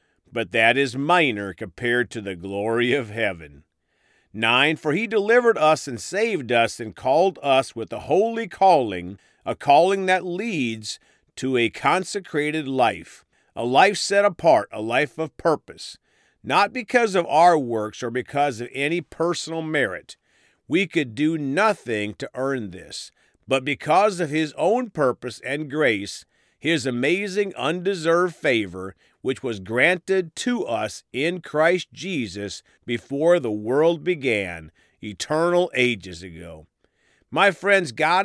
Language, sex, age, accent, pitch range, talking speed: English, male, 50-69, American, 120-180 Hz, 140 wpm